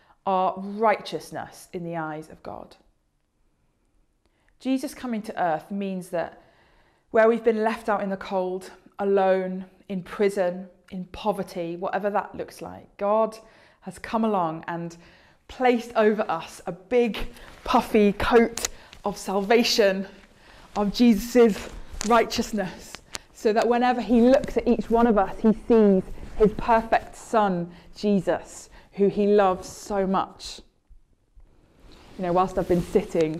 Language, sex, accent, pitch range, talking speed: English, female, British, 180-230 Hz, 135 wpm